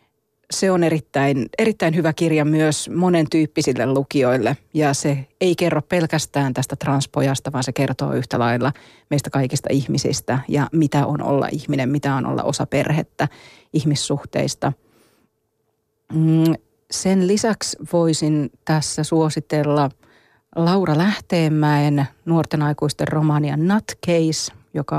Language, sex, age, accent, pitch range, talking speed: Finnish, female, 30-49, native, 140-160 Hz, 115 wpm